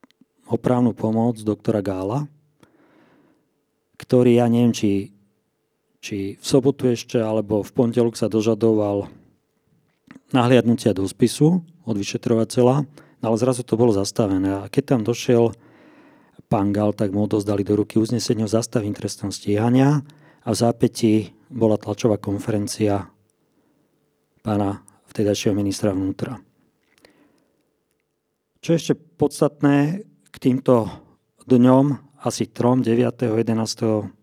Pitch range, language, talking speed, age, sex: 105-125 Hz, Slovak, 115 wpm, 40-59, male